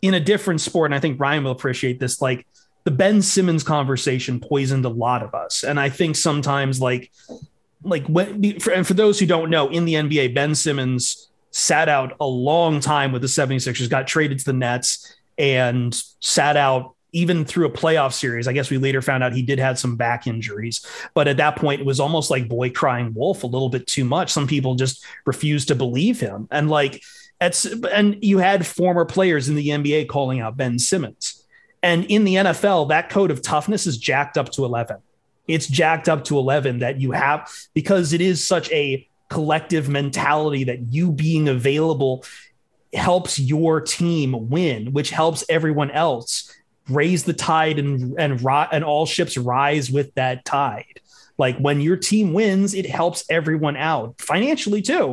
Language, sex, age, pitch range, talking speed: English, male, 30-49, 130-170 Hz, 190 wpm